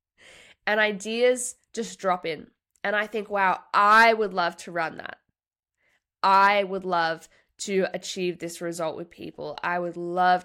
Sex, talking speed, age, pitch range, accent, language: female, 155 wpm, 10-29, 170-210 Hz, Australian, English